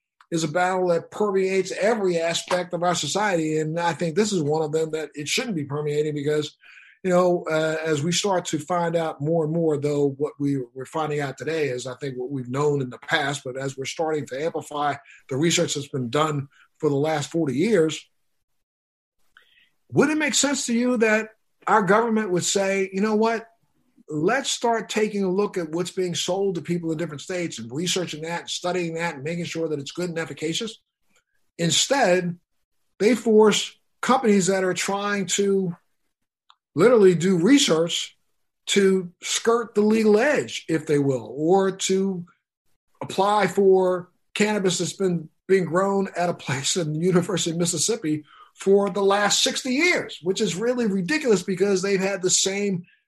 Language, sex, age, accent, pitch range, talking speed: English, male, 50-69, American, 155-200 Hz, 180 wpm